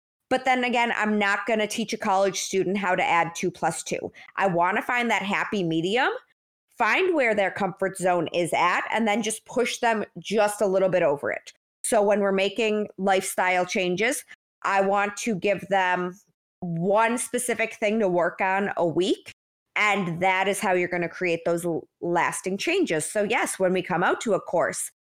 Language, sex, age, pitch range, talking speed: English, female, 20-39, 185-225 Hz, 195 wpm